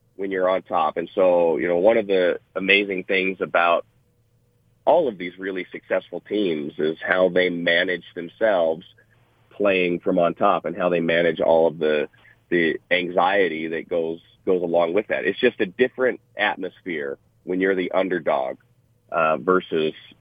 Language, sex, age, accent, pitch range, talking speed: English, male, 40-59, American, 85-115 Hz, 165 wpm